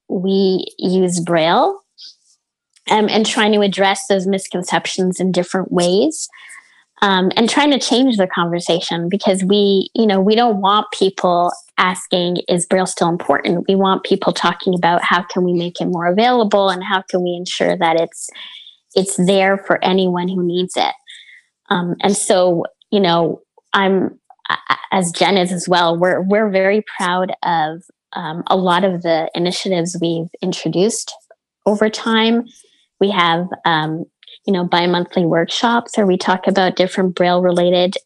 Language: English